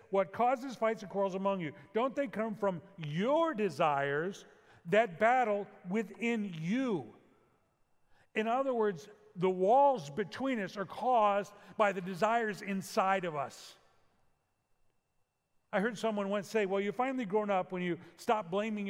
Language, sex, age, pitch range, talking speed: English, male, 50-69, 190-230 Hz, 145 wpm